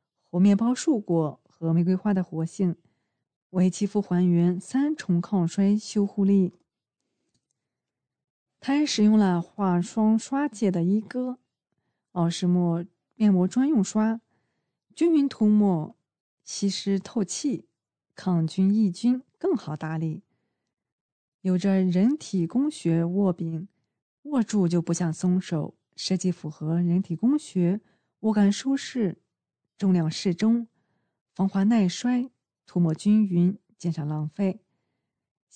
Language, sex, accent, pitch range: Chinese, female, native, 170-210 Hz